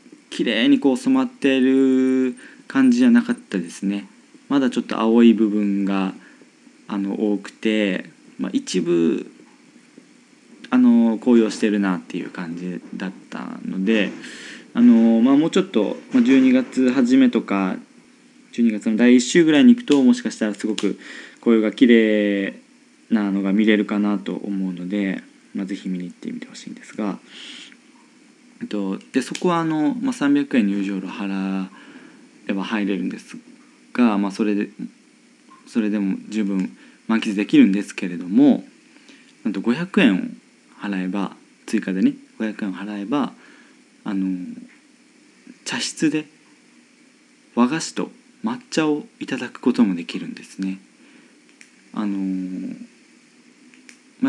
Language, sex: Japanese, male